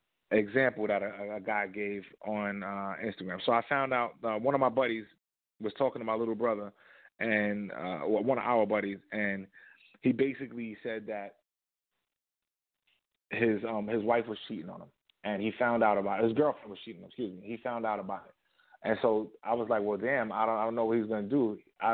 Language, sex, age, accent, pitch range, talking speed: English, male, 20-39, American, 105-125 Hz, 215 wpm